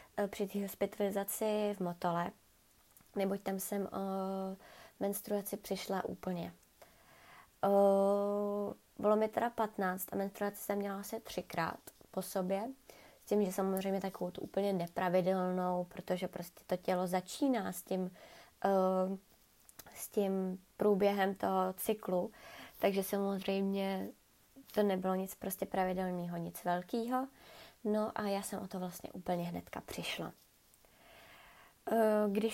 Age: 20-39